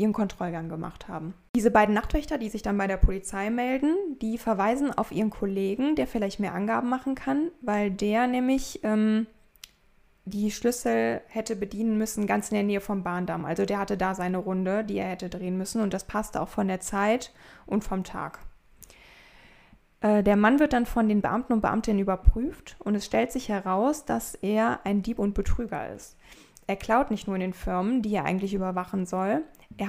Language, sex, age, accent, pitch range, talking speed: English, female, 20-39, German, 190-225 Hz, 195 wpm